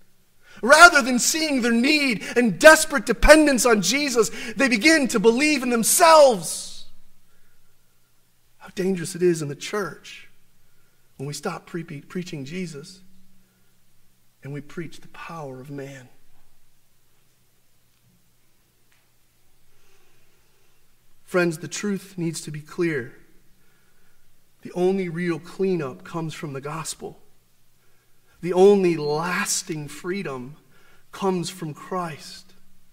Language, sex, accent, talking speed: English, male, American, 105 wpm